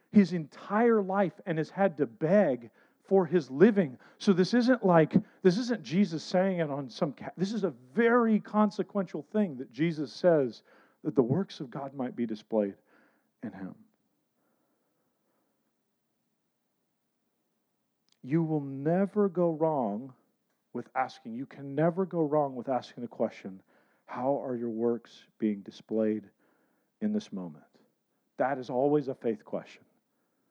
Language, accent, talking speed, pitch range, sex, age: English, American, 140 wpm, 125-195 Hz, male, 40-59